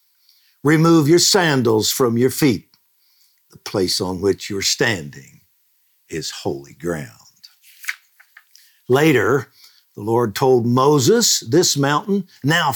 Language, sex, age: English, male, 60-79